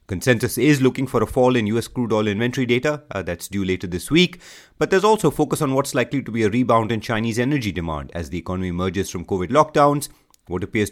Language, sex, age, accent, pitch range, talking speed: English, male, 30-49, Indian, 95-130 Hz, 230 wpm